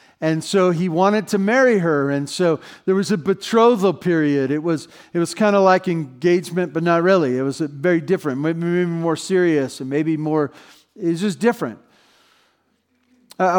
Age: 50-69